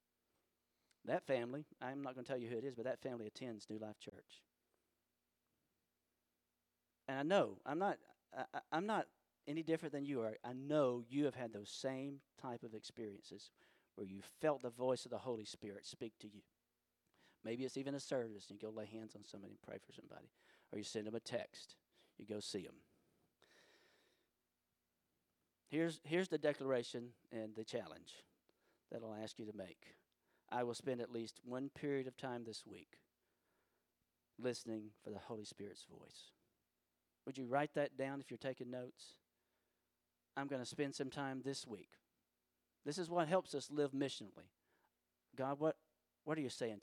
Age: 50-69